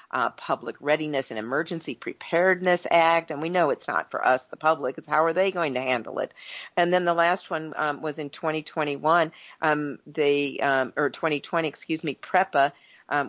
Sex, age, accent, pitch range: female, 50-69, American, 135-165 Hz